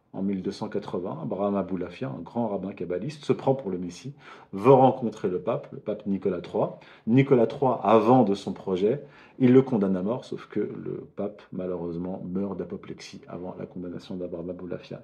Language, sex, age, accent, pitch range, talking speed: French, male, 40-59, French, 95-125 Hz, 175 wpm